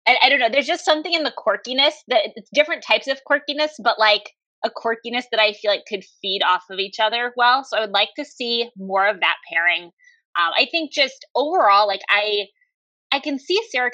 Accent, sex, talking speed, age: American, female, 225 wpm, 20-39